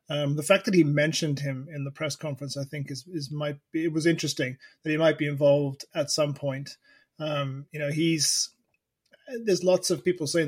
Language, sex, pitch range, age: English, male, 140-155 Hz, 30-49